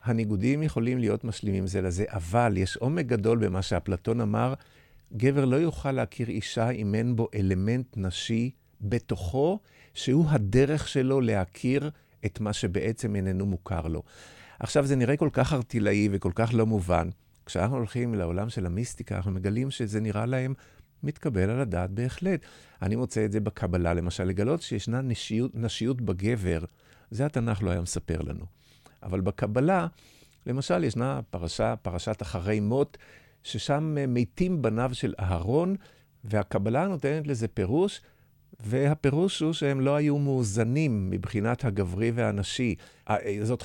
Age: 50-69